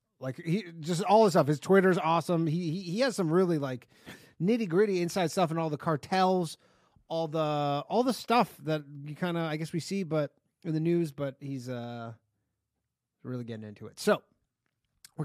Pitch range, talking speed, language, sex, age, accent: 135-185 Hz, 195 wpm, English, male, 30-49, American